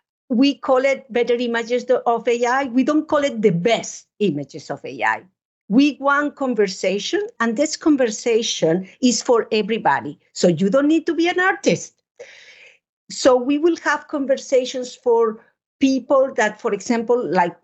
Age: 50-69